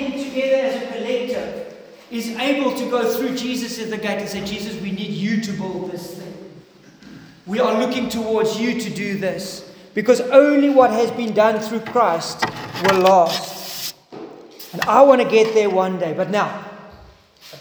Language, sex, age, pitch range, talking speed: English, male, 40-59, 180-230 Hz, 175 wpm